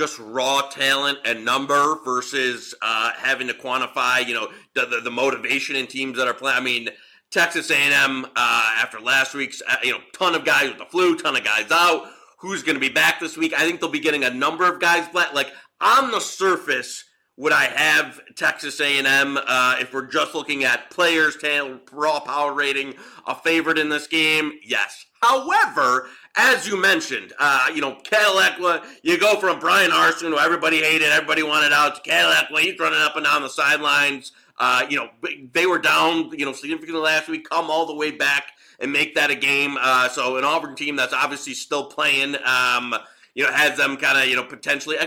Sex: male